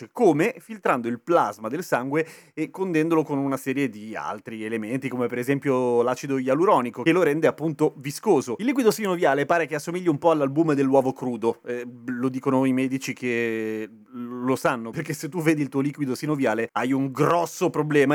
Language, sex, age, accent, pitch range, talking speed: Italian, male, 30-49, native, 125-165 Hz, 180 wpm